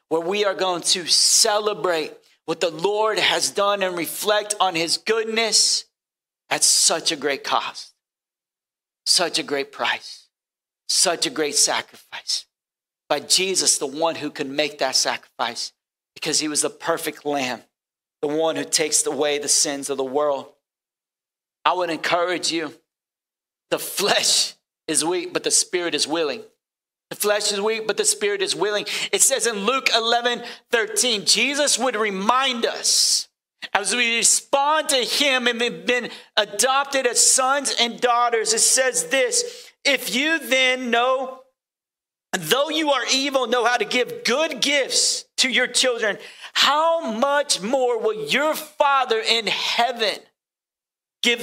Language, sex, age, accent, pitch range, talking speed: English, male, 40-59, American, 185-265 Hz, 150 wpm